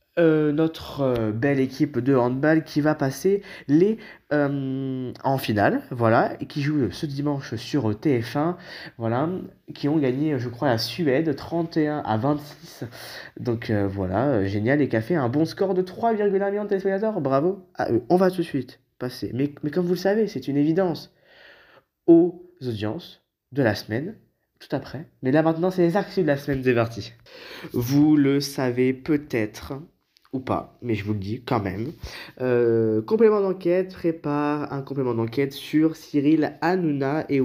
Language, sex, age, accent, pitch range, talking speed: French, male, 20-39, French, 120-165 Hz, 175 wpm